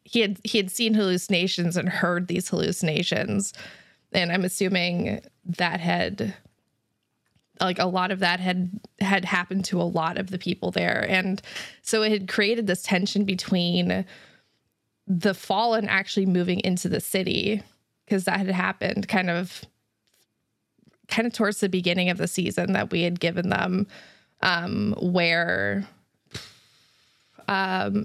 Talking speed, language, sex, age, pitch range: 145 wpm, English, female, 20-39, 175-195 Hz